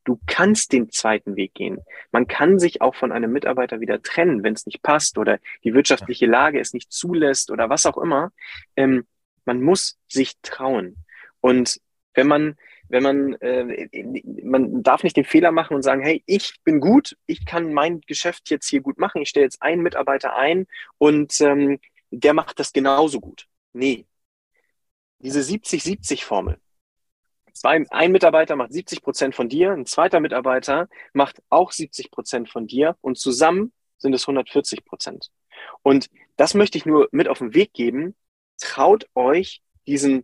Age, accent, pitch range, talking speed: 30-49, German, 130-175 Hz, 170 wpm